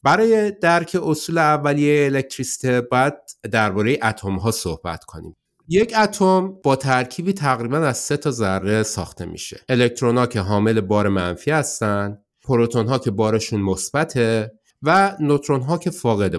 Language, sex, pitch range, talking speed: Persian, male, 105-155 Hz, 145 wpm